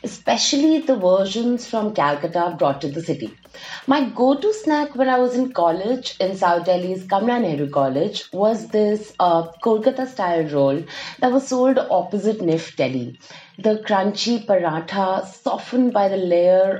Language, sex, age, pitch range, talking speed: English, female, 30-49, 165-225 Hz, 145 wpm